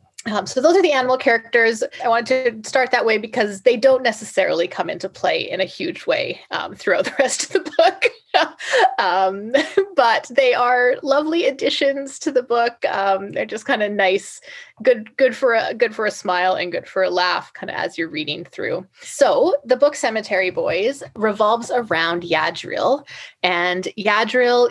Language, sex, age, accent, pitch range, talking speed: English, female, 20-39, American, 185-255 Hz, 180 wpm